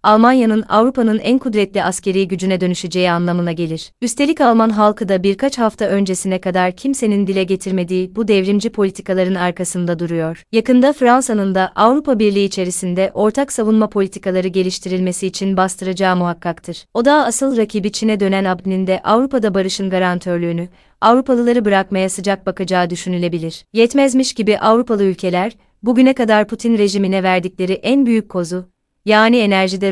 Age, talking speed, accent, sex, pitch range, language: 30-49, 135 wpm, native, female, 185-220 Hz, Turkish